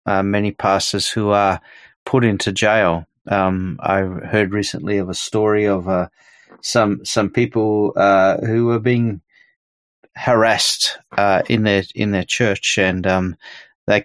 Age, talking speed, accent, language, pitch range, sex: 30-49, 145 wpm, Australian, English, 95-120 Hz, male